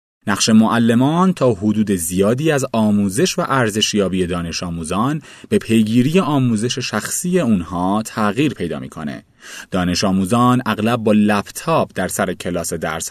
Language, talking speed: Persian, 135 wpm